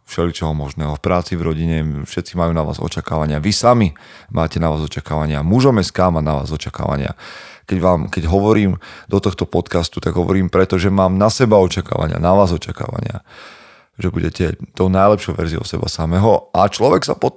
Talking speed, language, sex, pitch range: 175 wpm, Slovak, male, 85-105 Hz